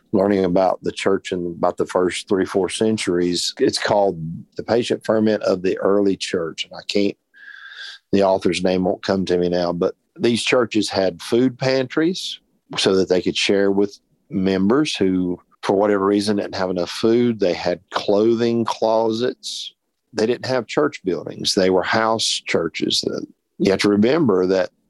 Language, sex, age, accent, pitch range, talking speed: English, male, 50-69, American, 90-110 Hz, 170 wpm